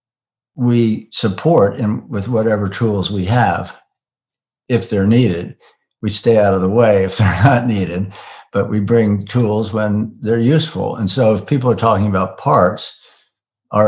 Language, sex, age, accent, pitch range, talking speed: English, male, 50-69, American, 95-110 Hz, 160 wpm